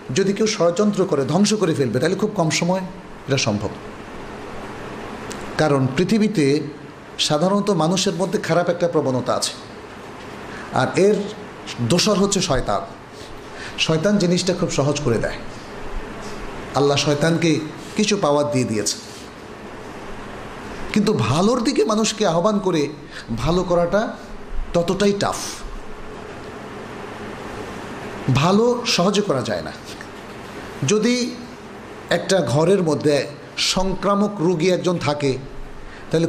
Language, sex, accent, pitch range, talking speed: Bengali, male, native, 150-205 Hz, 105 wpm